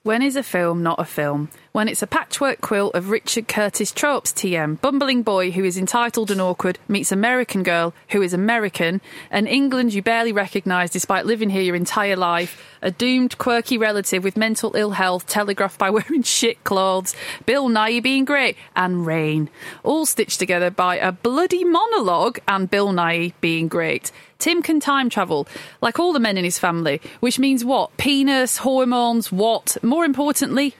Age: 30-49